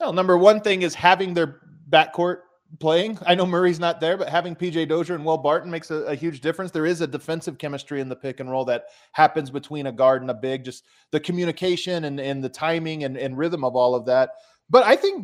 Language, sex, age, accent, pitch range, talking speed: English, male, 30-49, American, 140-180 Hz, 240 wpm